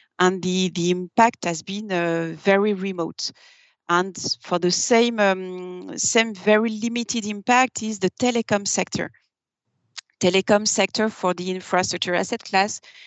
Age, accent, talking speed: 30-49, French, 130 wpm